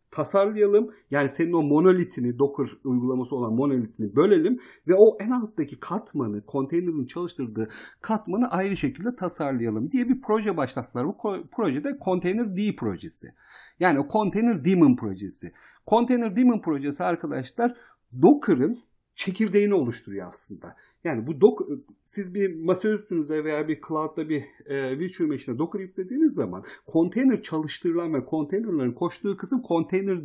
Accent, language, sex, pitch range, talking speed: native, Turkish, male, 140-220 Hz, 130 wpm